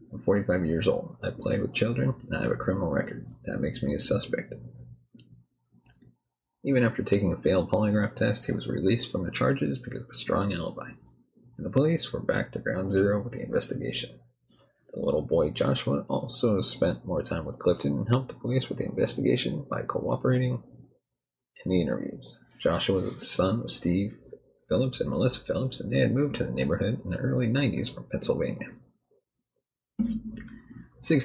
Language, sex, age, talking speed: English, male, 30-49, 180 wpm